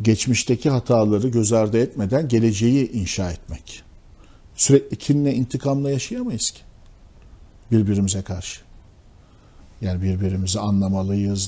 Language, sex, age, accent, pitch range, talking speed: Turkish, male, 50-69, native, 95-120 Hz, 95 wpm